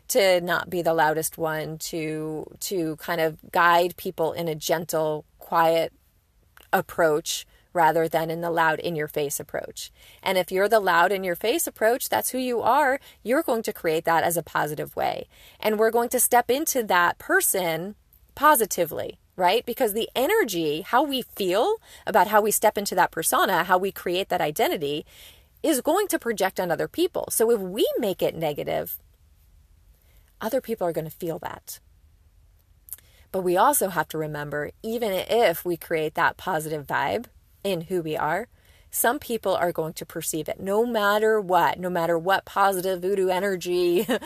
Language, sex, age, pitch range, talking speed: English, female, 30-49, 160-215 Hz, 170 wpm